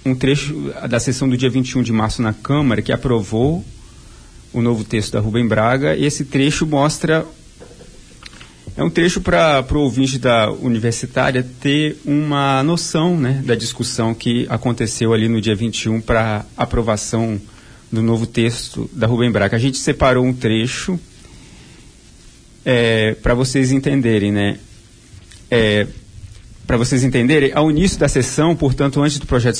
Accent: Brazilian